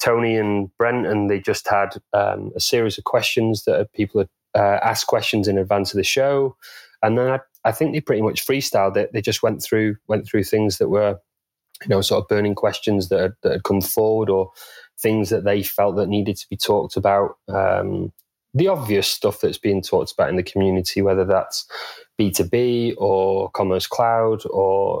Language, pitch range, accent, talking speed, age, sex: English, 100-115 Hz, British, 190 wpm, 30-49, male